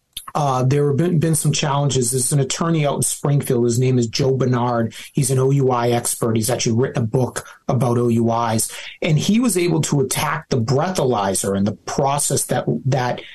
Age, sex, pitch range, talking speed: 30-49, male, 130-160 Hz, 190 wpm